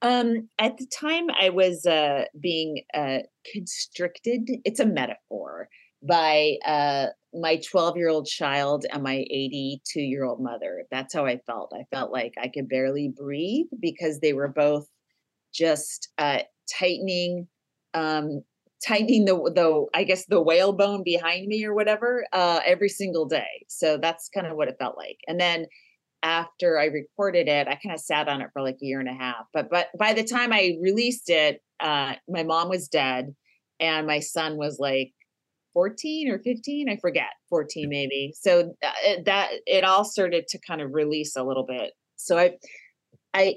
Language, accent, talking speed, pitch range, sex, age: English, American, 170 wpm, 145-190 Hz, female, 30-49